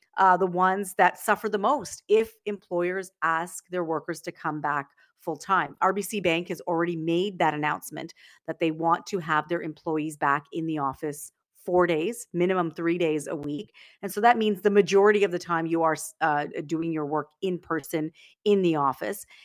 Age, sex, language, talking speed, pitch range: 40-59, female, English, 190 wpm, 160-205 Hz